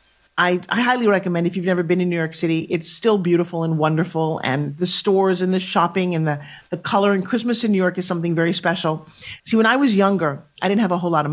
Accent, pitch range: American, 170-220 Hz